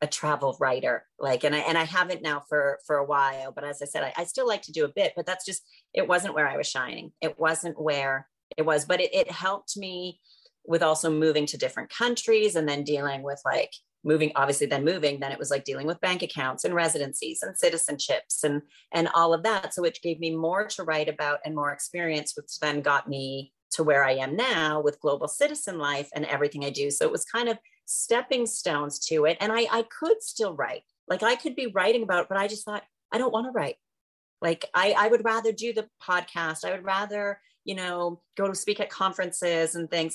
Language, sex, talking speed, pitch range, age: English, female, 235 wpm, 155-205 Hz, 30-49